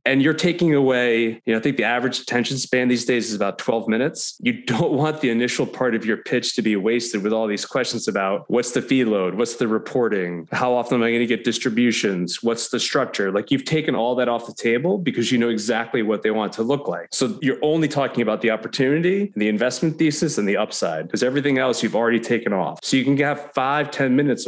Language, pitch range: English, 115-140 Hz